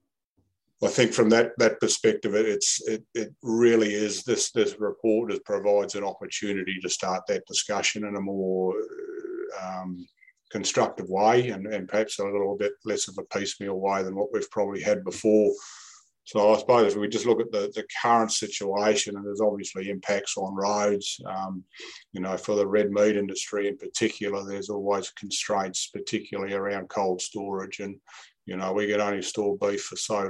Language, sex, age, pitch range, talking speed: English, male, 50-69, 95-155 Hz, 180 wpm